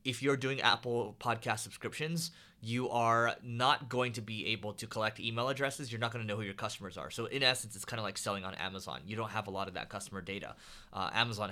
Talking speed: 240 wpm